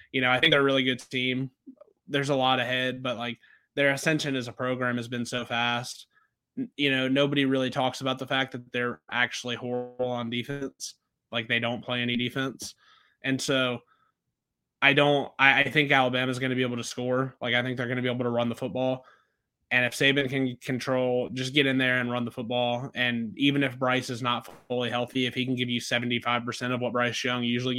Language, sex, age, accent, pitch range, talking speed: English, male, 20-39, American, 120-140 Hz, 220 wpm